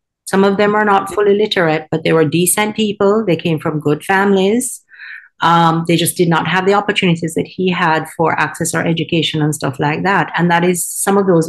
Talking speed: 220 wpm